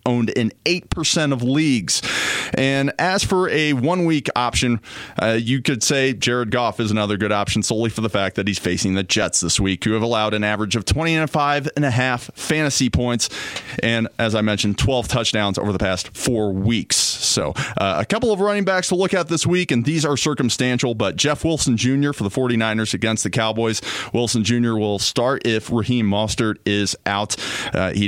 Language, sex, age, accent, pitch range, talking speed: English, male, 30-49, American, 105-135 Hz, 200 wpm